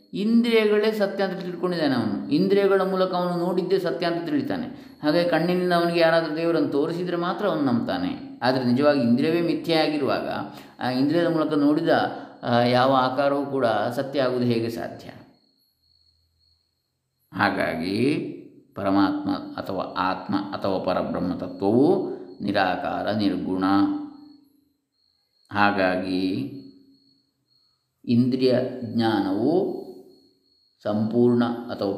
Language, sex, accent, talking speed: Kannada, male, native, 90 wpm